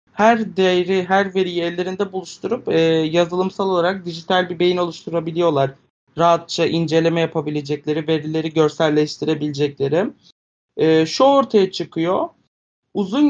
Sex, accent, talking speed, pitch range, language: male, native, 105 wpm, 165-210 Hz, Turkish